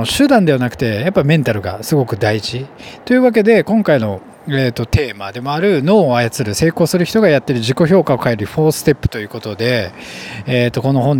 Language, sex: Japanese, male